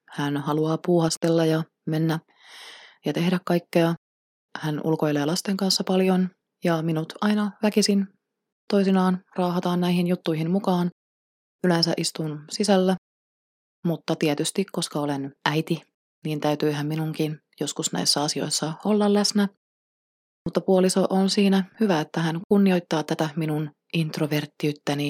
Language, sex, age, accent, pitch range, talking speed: Finnish, female, 20-39, native, 155-190 Hz, 120 wpm